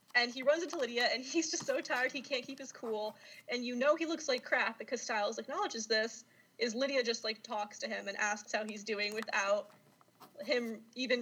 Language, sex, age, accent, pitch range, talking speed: English, female, 20-39, American, 225-295 Hz, 220 wpm